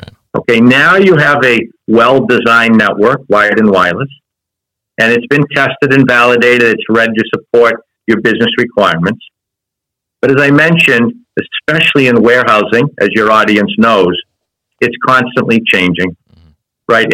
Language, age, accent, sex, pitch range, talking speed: English, 50-69, American, male, 110-140 Hz, 135 wpm